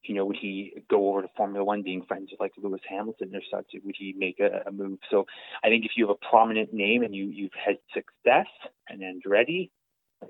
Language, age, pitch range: English, 30-49, 100-125 Hz